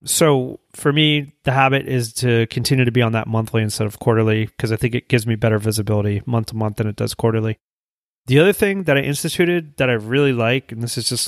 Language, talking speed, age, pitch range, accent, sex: English, 240 wpm, 30-49, 115-145 Hz, American, male